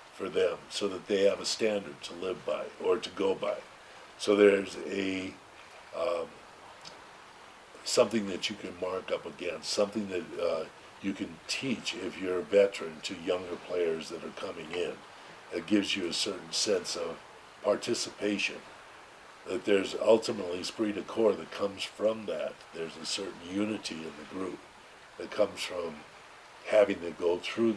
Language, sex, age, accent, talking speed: English, male, 50-69, American, 160 wpm